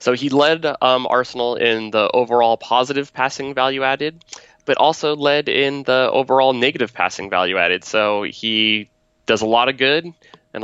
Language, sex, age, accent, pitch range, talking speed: English, male, 20-39, American, 100-115 Hz, 170 wpm